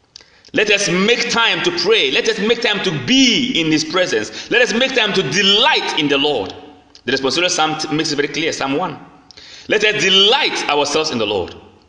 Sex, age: male, 30-49